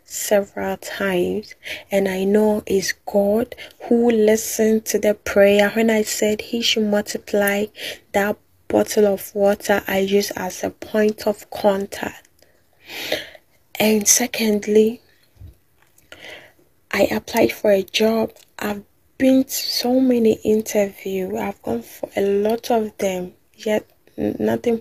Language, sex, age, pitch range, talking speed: English, female, 10-29, 195-220 Hz, 125 wpm